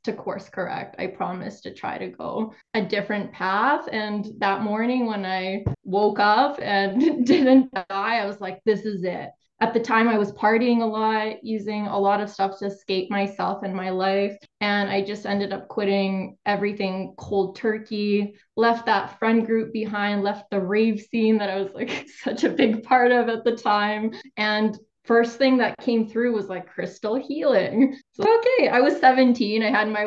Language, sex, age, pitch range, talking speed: English, female, 20-39, 195-230 Hz, 190 wpm